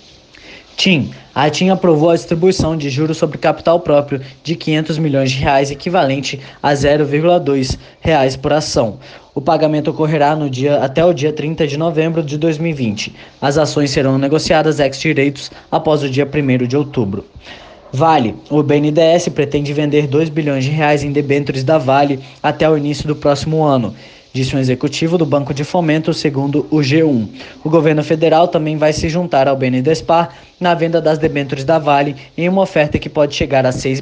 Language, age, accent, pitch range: Portuguese, 20-39, Brazilian, 140-160 Hz